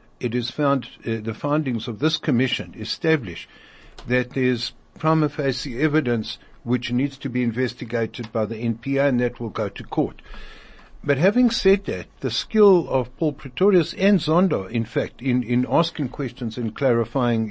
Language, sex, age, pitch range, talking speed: English, male, 60-79, 120-150 Hz, 170 wpm